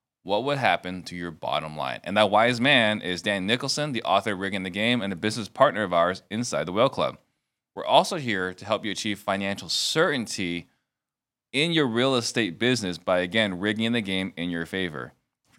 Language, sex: English, male